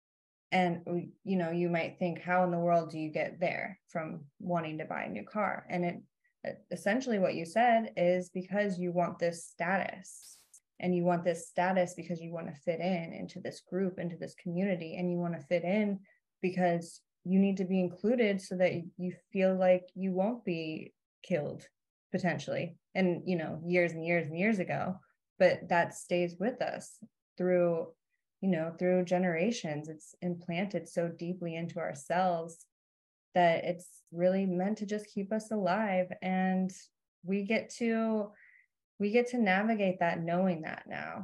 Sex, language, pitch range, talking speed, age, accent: female, English, 170-195 Hz, 170 wpm, 20-39, American